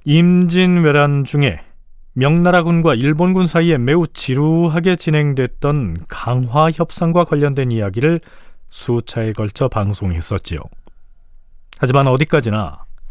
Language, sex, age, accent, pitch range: Korean, male, 40-59, native, 120-175 Hz